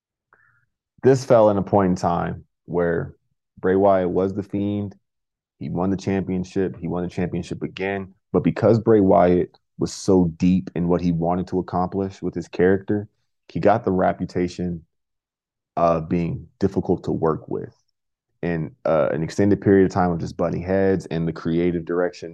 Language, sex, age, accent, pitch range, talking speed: English, male, 30-49, American, 90-95 Hz, 170 wpm